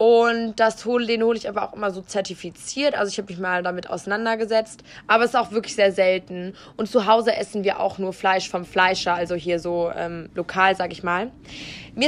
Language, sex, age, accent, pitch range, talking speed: German, female, 20-39, German, 190-235 Hz, 220 wpm